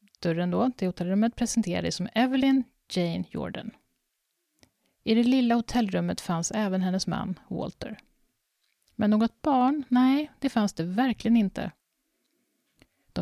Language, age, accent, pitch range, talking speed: Swedish, 30-49, native, 185-245 Hz, 125 wpm